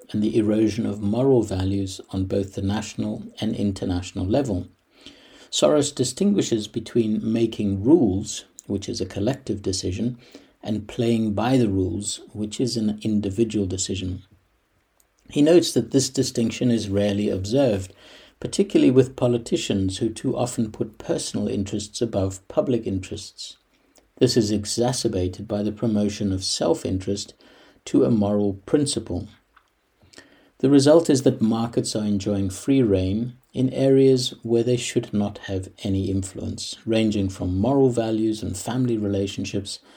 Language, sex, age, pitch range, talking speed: English, male, 60-79, 100-120 Hz, 135 wpm